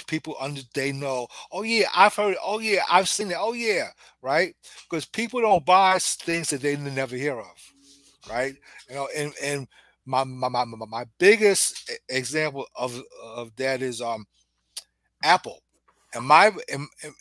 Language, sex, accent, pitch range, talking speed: English, male, American, 130-180 Hz, 165 wpm